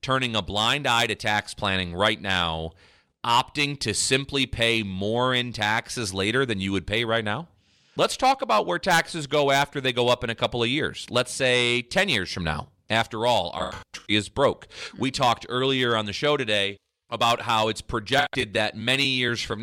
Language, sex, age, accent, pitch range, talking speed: English, male, 30-49, American, 105-135 Hz, 200 wpm